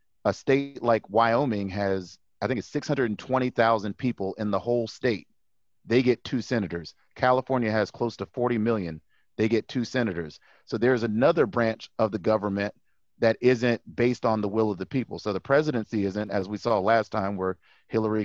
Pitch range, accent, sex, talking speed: 105-125 Hz, American, male, 180 wpm